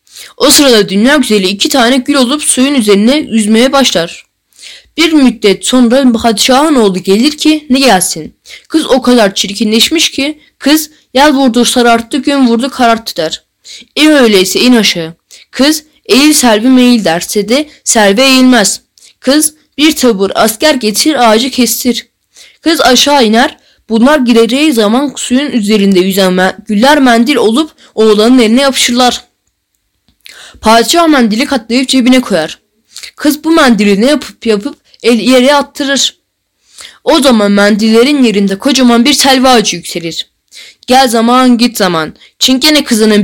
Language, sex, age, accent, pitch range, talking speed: Turkish, female, 10-29, native, 220-280 Hz, 135 wpm